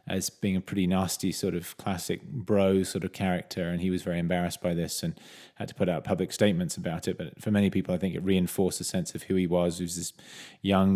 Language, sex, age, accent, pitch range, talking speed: English, male, 20-39, British, 90-105 Hz, 250 wpm